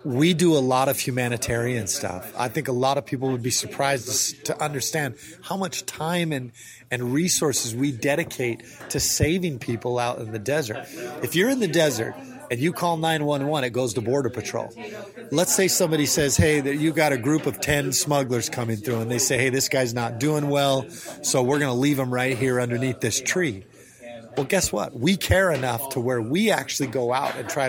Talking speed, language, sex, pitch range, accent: 210 wpm, English, male, 125-150 Hz, American